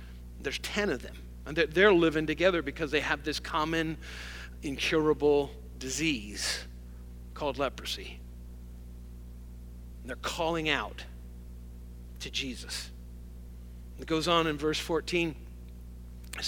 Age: 50-69